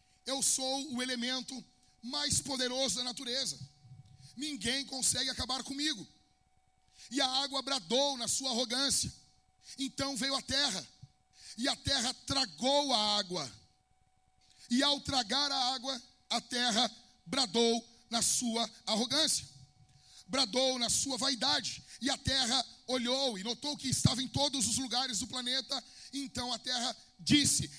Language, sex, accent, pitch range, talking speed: Portuguese, male, Brazilian, 230-265 Hz, 135 wpm